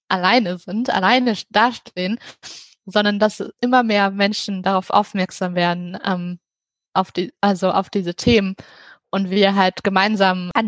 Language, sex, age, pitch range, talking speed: German, female, 20-39, 195-225 Hz, 135 wpm